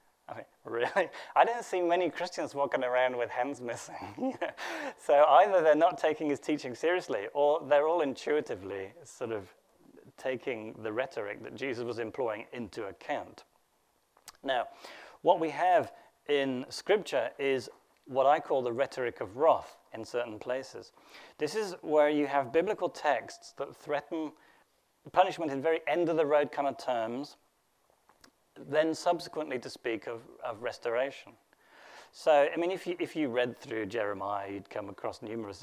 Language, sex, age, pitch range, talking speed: English, male, 30-49, 120-155 Hz, 150 wpm